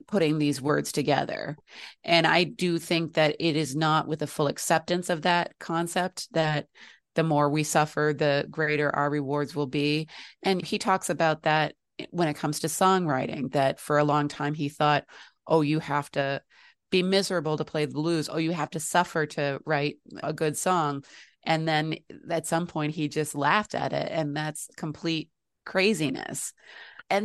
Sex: female